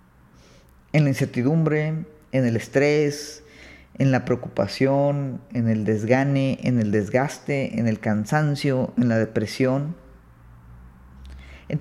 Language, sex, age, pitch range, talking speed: Spanish, female, 40-59, 110-160 Hz, 110 wpm